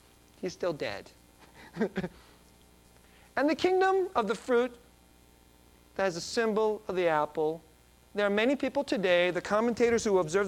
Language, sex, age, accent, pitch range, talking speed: English, male, 40-59, American, 135-220 Hz, 145 wpm